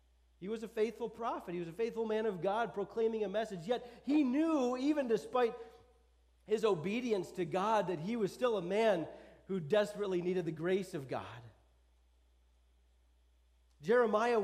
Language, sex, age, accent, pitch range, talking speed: English, male, 40-59, American, 140-215 Hz, 160 wpm